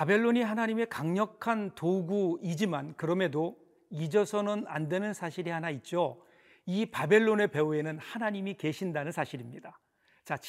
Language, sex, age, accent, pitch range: Korean, male, 40-59, native, 160-215 Hz